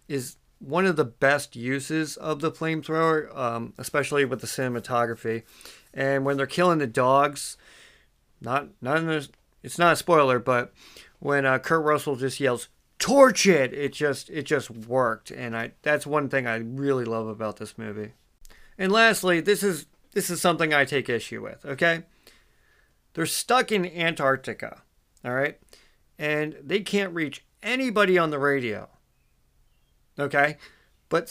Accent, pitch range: American, 130-170 Hz